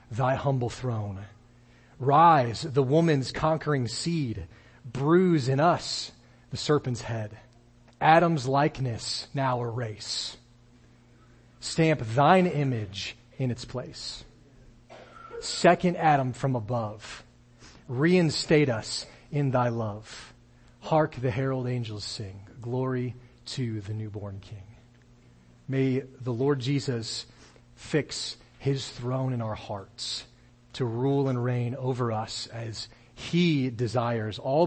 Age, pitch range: 40-59, 115-140 Hz